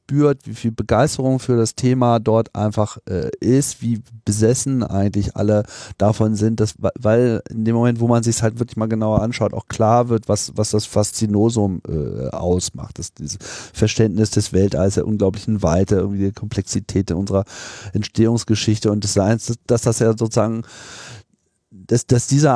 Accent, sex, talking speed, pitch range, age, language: German, male, 170 wpm, 100-120 Hz, 40-59, German